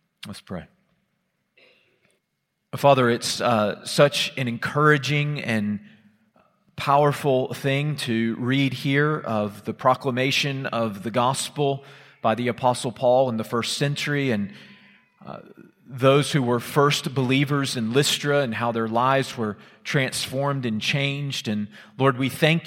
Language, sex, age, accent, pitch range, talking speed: English, male, 40-59, American, 115-145 Hz, 130 wpm